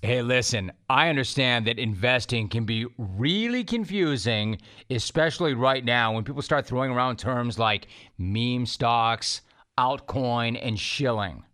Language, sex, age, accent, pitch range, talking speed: English, male, 30-49, American, 115-150 Hz, 130 wpm